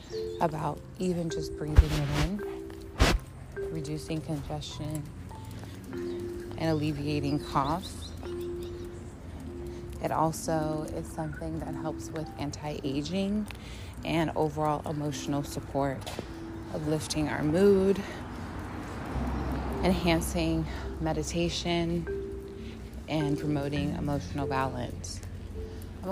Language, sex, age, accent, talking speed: English, female, 20-39, American, 80 wpm